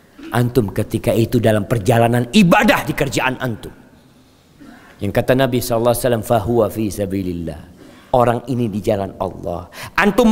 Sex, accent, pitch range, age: male, native, 115-160 Hz, 50-69